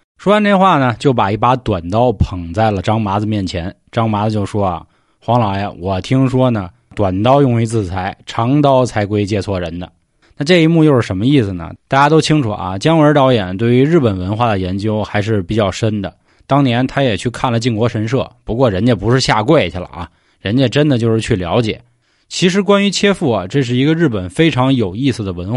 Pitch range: 100-140 Hz